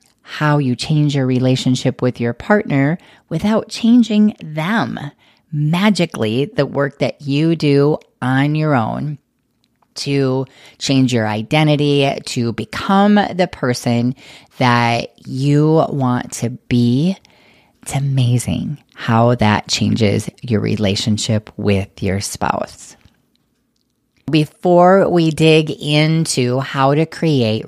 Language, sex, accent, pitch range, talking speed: English, female, American, 120-155 Hz, 110 wpm